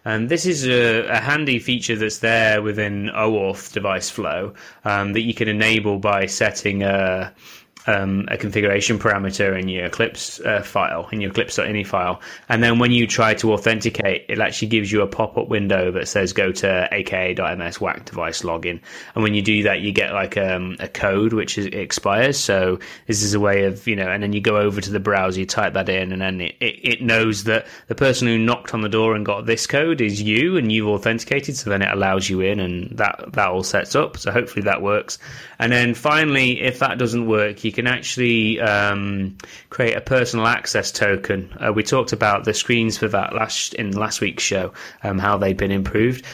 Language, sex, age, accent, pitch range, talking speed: English, male, 20-39, British, 95-115 Hz, 210 wpm